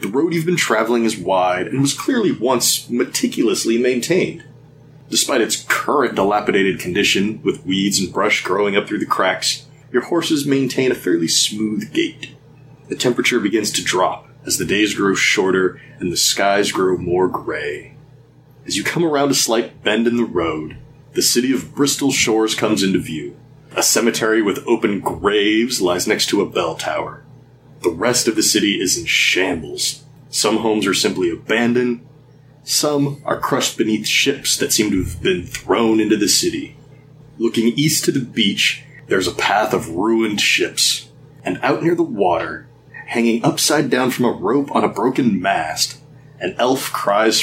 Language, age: English, 30-49